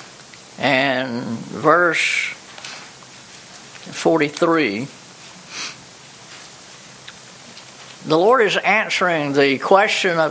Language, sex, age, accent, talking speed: English, female, 60-79, American, 60 wpm